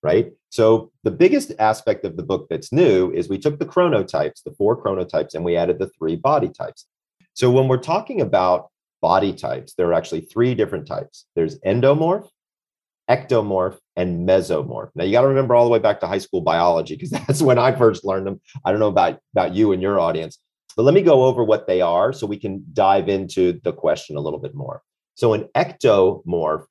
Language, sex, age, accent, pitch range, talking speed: English, male, 40-59, American, 95-130 Hz, 210 wpm